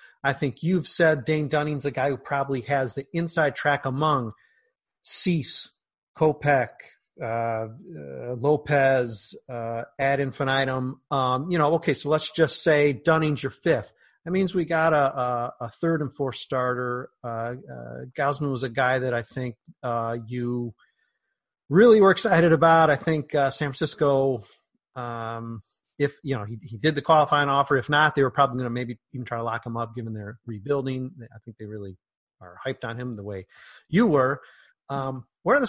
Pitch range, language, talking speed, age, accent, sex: 125-155 Hz, English, 180 wpm, 30-49, American, male